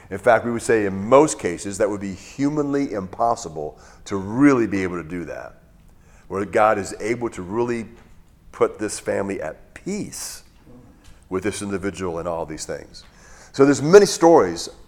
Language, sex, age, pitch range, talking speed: English, male, 40-59, 95-120 Hz, 170 wpm